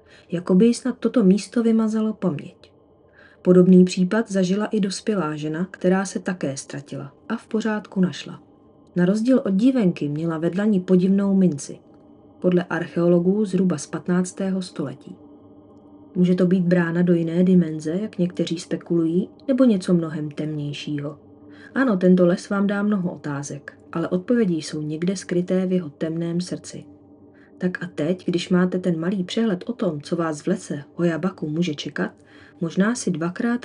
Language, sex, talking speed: Czech, female, 150 wpm